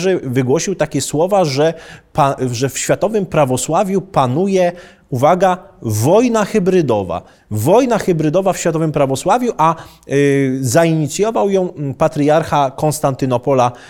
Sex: male